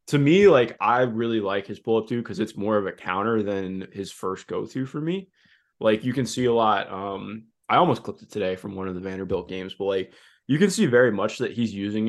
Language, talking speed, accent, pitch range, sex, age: English, 250 wpm, American, 95-115 Hz, male, 20-39